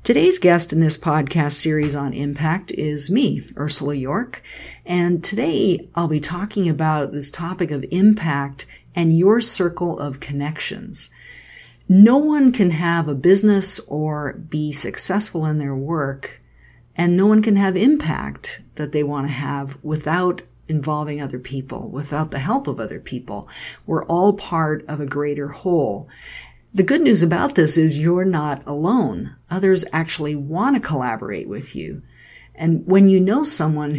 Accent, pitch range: American, 145-185 Hz